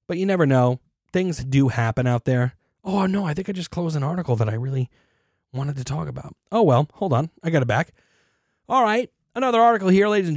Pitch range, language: 125-180 Hz, English